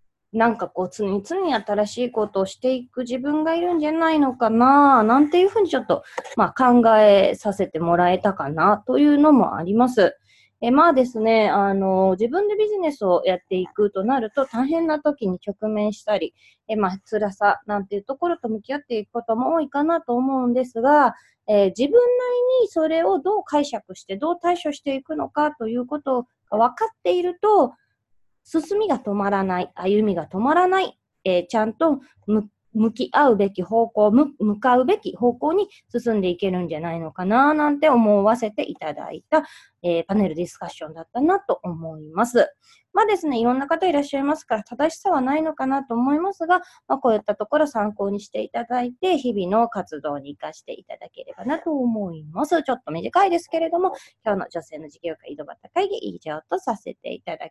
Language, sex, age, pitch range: Japanese, female, 20-39, 200-310 Hz